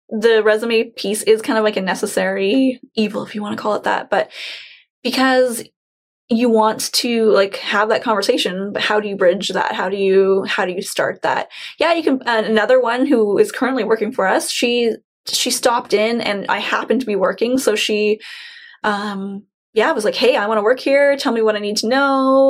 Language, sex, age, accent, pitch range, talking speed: English, female, 10-29, American, 210-270 Hz, 215 wpm